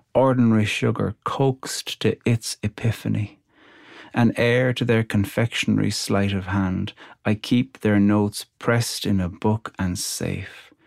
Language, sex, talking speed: English, male, 135 wpm